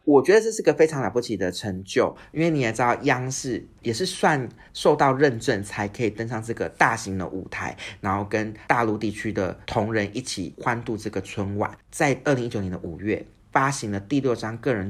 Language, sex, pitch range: Chinese, male, 110-150 Hz